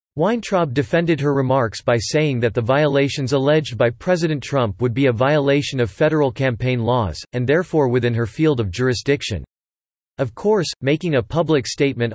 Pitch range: 120-150 Hz